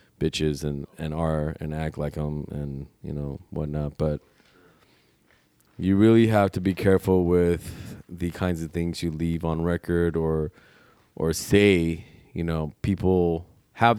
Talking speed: 150 wpm